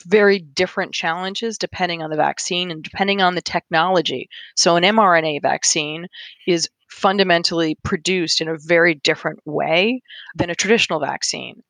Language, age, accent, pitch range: English, 30-49, American, 165-205 Hz